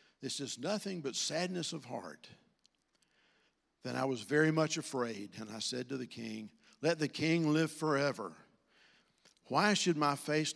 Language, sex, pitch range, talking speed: English, male, 125-165 Hz, 160 wpm